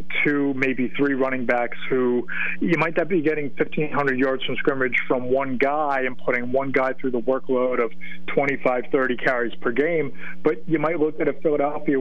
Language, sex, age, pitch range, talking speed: English, male, 30-49, 125-150 Hz, 190 wpm